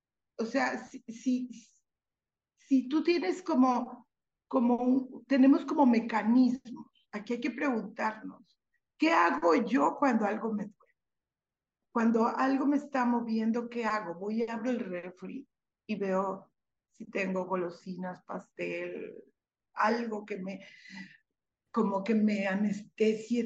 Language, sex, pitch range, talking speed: Spanish, female, 195-235 Hz, 125 wpm